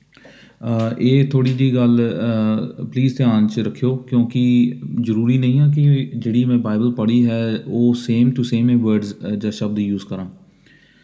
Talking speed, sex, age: 160 wpm, male, 30-49